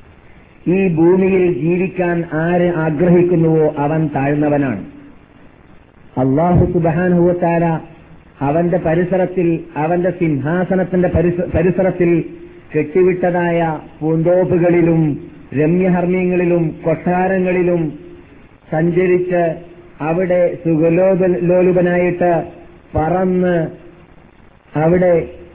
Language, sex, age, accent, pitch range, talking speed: Malayalam, male, 50-69, native, 155-180 Hz, 50 wpm